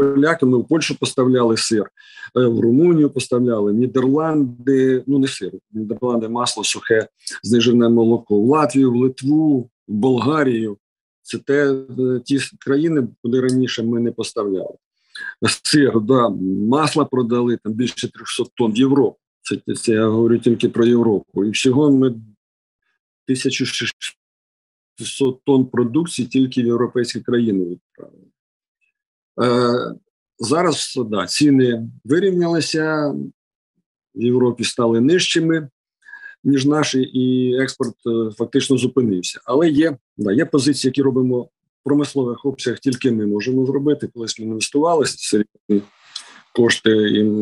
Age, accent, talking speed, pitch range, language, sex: 50-69, native, 120 wpm, 115-140 Hz, Ukrainian, male